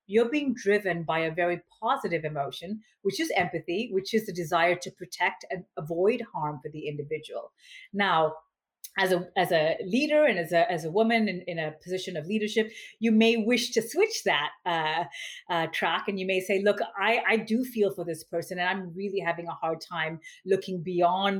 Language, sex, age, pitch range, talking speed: English, female, 30-49, 170-220 Hz, 200 wpm